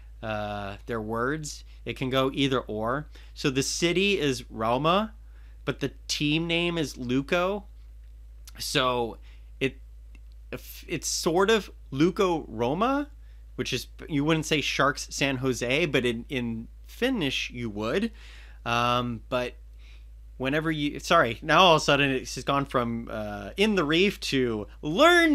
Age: 30-49